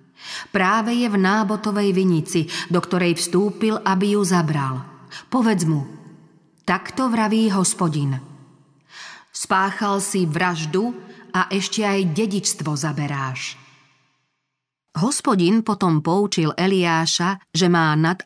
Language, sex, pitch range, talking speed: Slovak, female, 160-200 Hz, 100 wpm